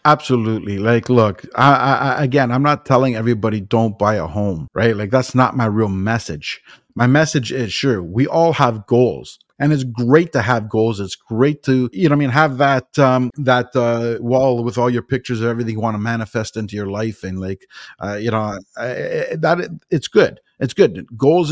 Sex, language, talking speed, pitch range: male, English, 210 wpm, 115-145 Hz